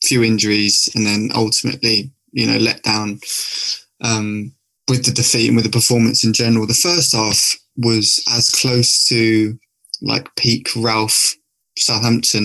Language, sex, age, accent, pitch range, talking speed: English, male, 20-39, British, 115-125 Hz, 145 wpm